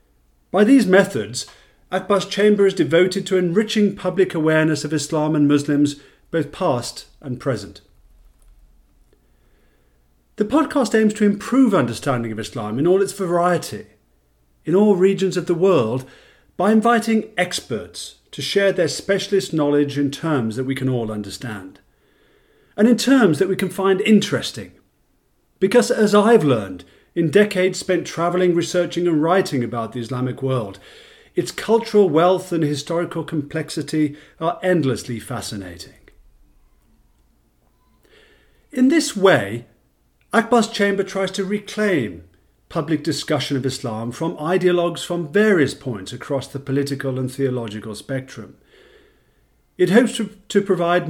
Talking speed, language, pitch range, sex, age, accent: 130 wpm, English, 125-195 Hz, male, 40-59, British